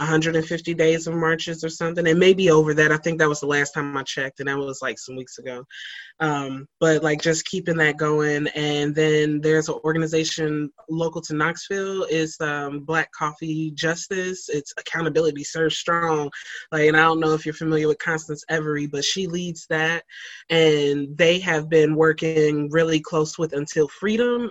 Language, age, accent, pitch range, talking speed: English, 20-39, American, 155-170 Hz, 185 wpm